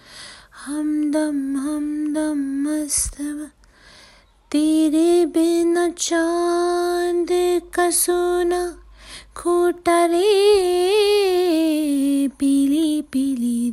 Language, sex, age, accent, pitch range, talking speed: Hindi, female, 20-39, native, 275-325 Hz, 55 wpm